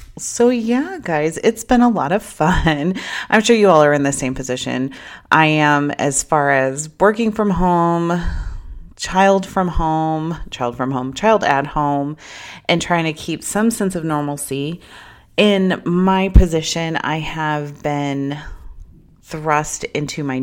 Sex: female